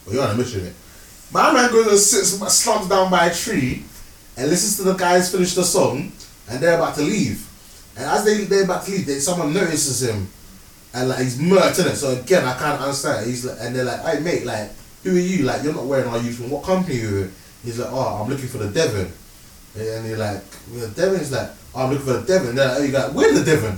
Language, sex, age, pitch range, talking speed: English, male, 20-39, 120-195 Hz, 240 wpm